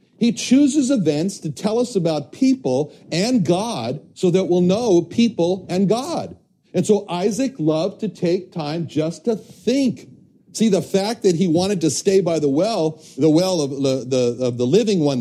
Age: 60-79